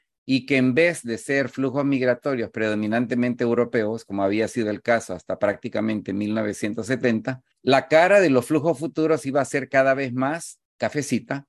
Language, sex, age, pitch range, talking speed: English, male, 40-59, 120-145 Hz, 160 wpm